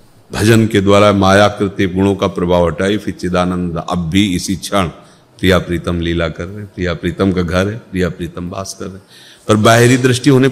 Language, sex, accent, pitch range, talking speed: Hindi, male, native, 90-125 Hz, 185 wpm